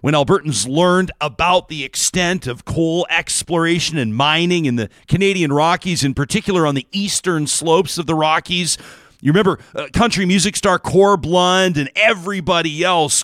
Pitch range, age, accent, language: 150-185 Hz, 40-59, American, English